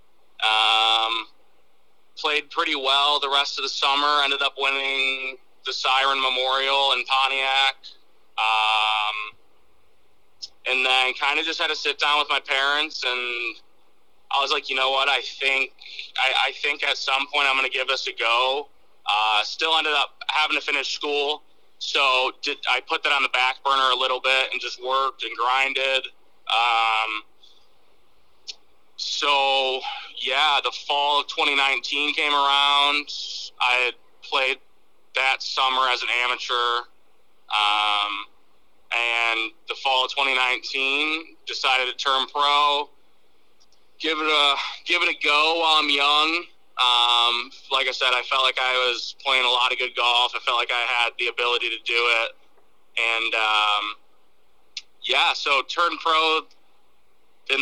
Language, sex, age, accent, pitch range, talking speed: English, male, 20-39, American, 125-145 Hz, 155 wpm